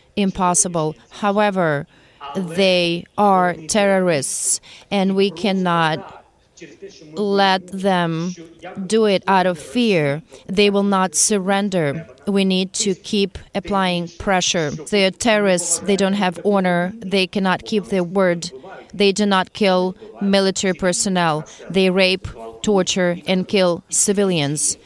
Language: English